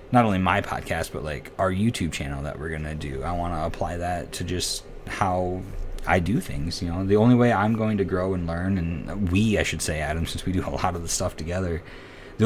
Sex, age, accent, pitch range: male, 20-39, American, 85-100 Hz